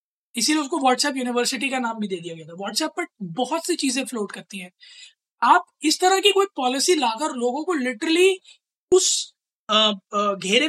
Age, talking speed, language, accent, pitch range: 20-39, 170 wpm, Hindi, native, 235-325 Hz